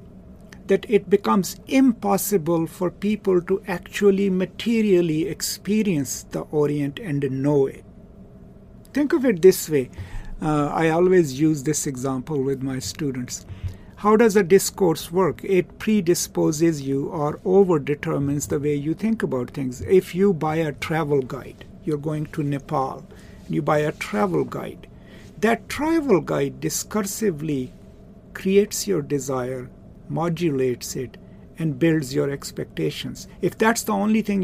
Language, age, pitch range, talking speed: English, 60-79, 145-195 Hz, 140 wpm